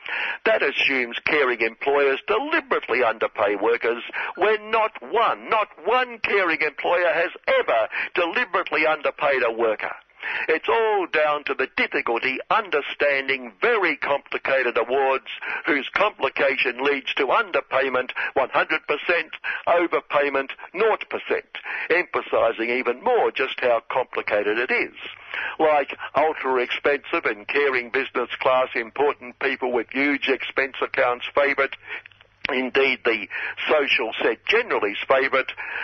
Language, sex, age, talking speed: English, male, 60-79, 110 wpm